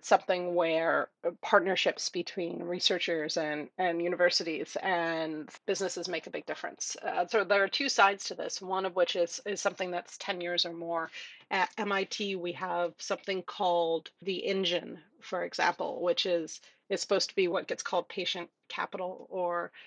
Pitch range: 170-200 Hz